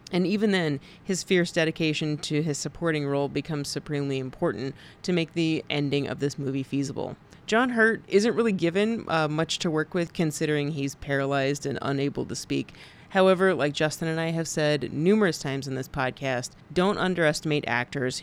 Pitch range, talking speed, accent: 140-170 Hz, 175 wpm, American